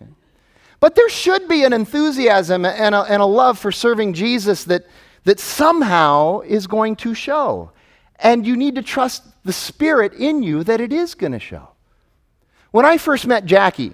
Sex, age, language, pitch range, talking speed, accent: male, 30-49, English, 165-270 Hz, 170 wpm, American